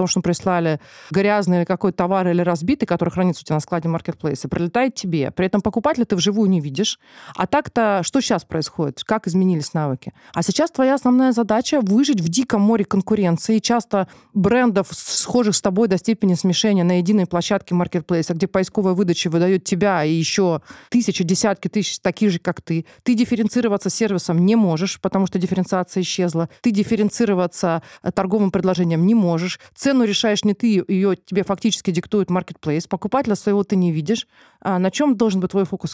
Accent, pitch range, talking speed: native, 180-225 Hz, 175 wpm